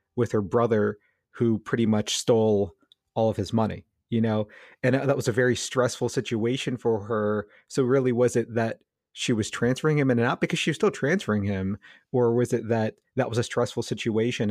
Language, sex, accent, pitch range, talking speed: English, male, American, 105-125 Hz, 205 wpm